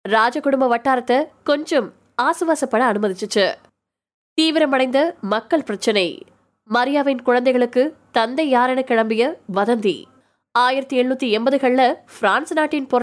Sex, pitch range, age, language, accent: female, 230-300 Hz, 20-39, Tamil, native